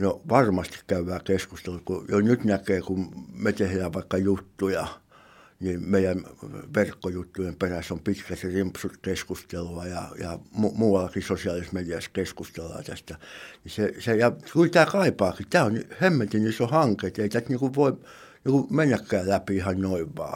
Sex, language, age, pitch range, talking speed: male, Finnish, 60-79, 95-110 Hz, 150 wpm